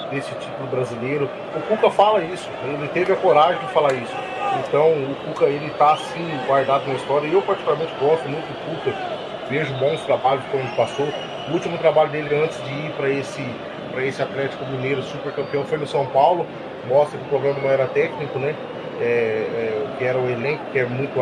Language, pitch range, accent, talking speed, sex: Portuguese, 130-160 Hz, Brazilian, 200 wpm, male